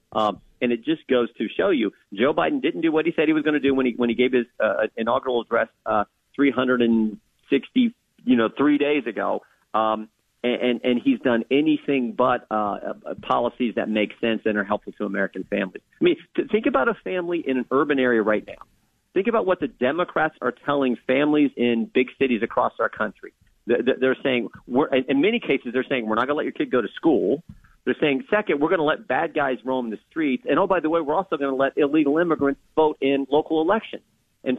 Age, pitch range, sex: 40-59, 120-180 Hz, male